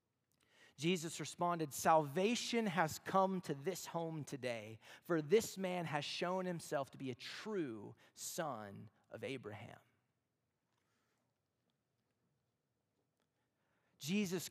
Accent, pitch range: American, 130-215 Hz